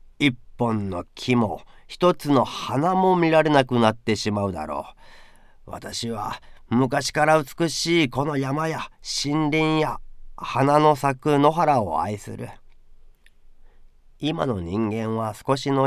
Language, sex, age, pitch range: Japanese, male, 40-59, 105-145 Hz